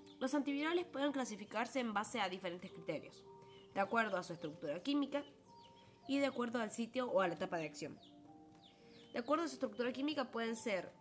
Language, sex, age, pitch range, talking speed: Spanish, female, 20-39, 190-280 Hz, 185 wpm